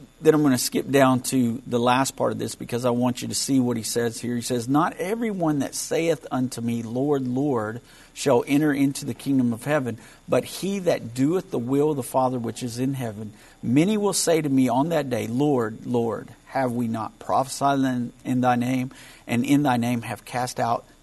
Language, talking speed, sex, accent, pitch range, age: English, 215 wpm, male, American, 120-155 Hz, 50-69